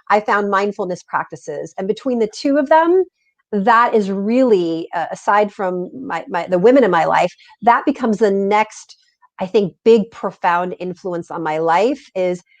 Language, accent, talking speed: English, American, 170 wpm